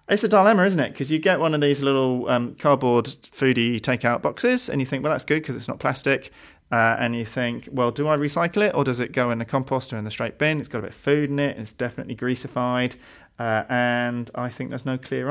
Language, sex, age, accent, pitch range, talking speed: English, male, 30-49, British, 115-145 Hz, 260 wpm